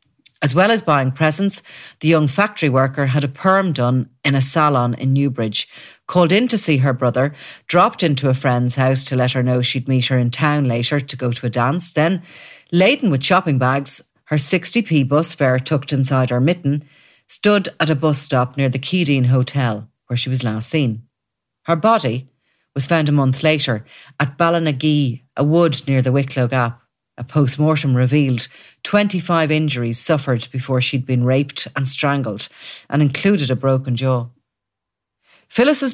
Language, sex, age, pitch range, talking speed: English, female, 40-59, 130-160 Hz, 175 wpm